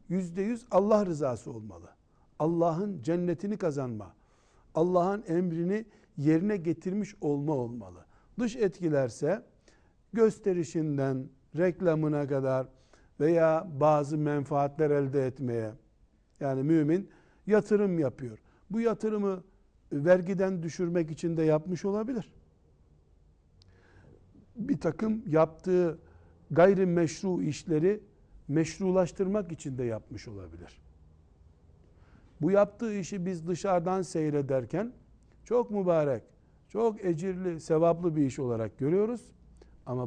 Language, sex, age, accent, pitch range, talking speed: Turkish, male, 60-79, native, 120-180 Hz, 90 wpm